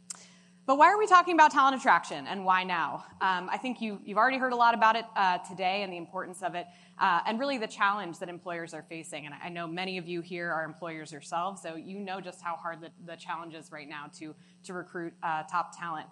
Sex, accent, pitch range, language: female, American, 165-210 Hz, English